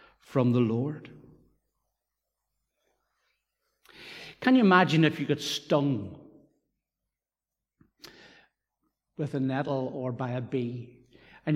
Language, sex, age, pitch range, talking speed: English, male, 60-79, 135-185 Hz, 95 wpm